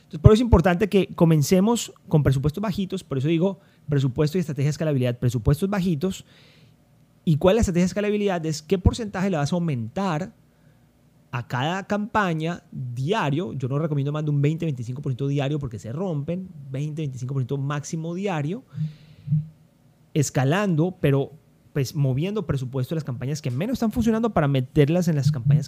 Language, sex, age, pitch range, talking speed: Spanish, male, 30-49, 140-175 Hz, 160 wpm